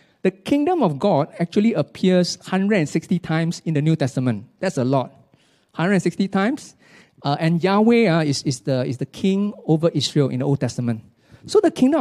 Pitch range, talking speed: 135-180 Hz, 180 wpm